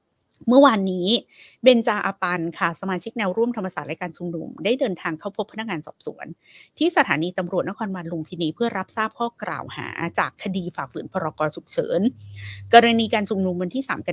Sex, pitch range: female, 170-220 Hz